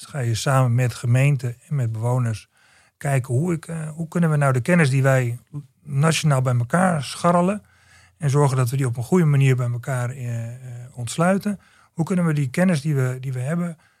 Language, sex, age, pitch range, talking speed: Dutch, male, 40-59, 120-155 Hz, 190 wpm